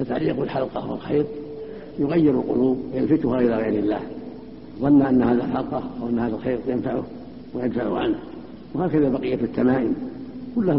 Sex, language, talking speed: male, Arabic, 130 wpm